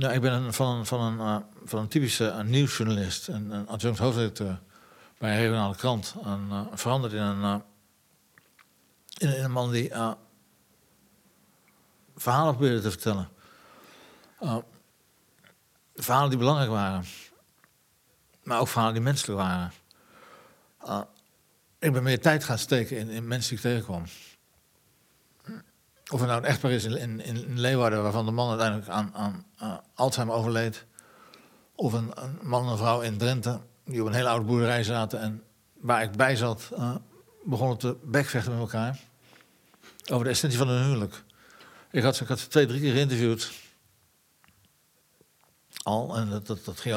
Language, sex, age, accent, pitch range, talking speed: Dutch, male, 60-79, Dutch, 110-130 Hz, 160 wpm